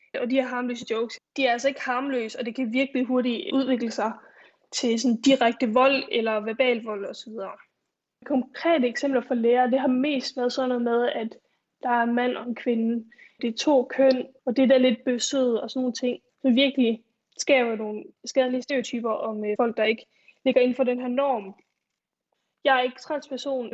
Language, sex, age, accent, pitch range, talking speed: Danish, female, 10-29, native, 235-265 Hz, 195 wpm